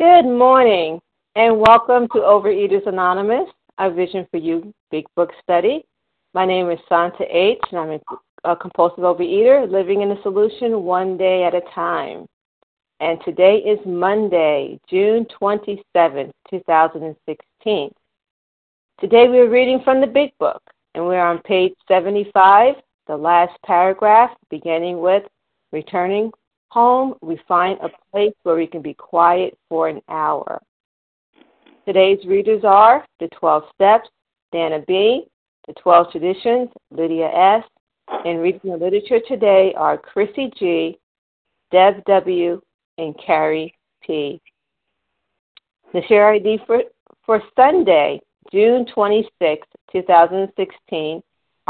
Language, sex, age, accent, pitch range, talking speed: English, female, 50-69, American, 170-220 Hz, 125 wpm